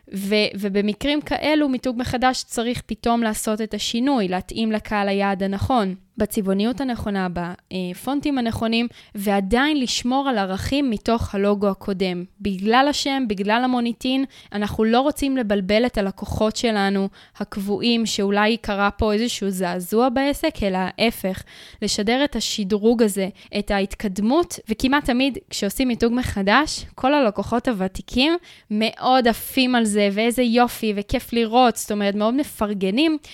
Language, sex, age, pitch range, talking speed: Hebrew, female, 20-39, 200-250 Hz, 130 wpm